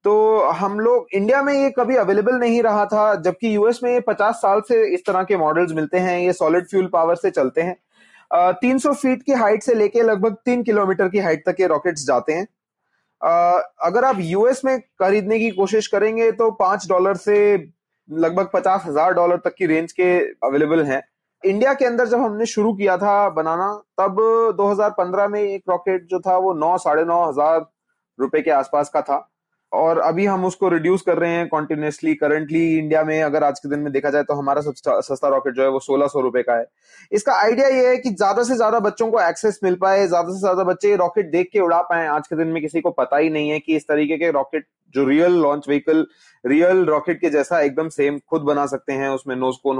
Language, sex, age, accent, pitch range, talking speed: Hindi, male, 30-49, native, 150-210 Hz, 215 wpm